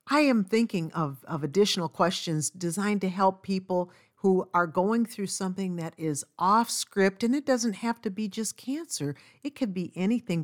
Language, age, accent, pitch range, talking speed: English, 50-69, American, 155-215 Hz, 185 wpm